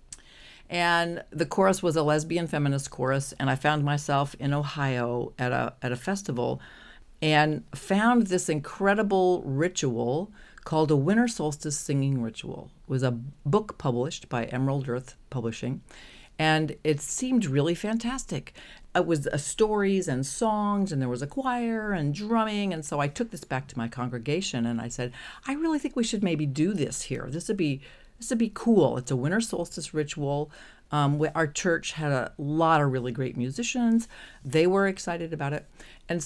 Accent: American